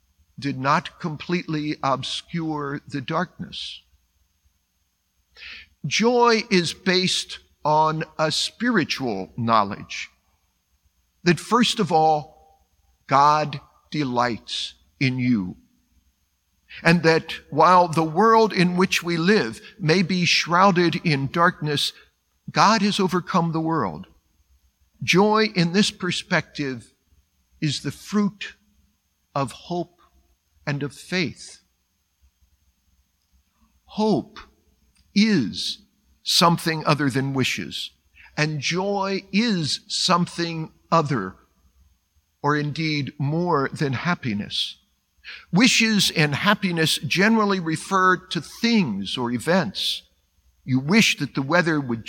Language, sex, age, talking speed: English, male, 50-69, 95 wpm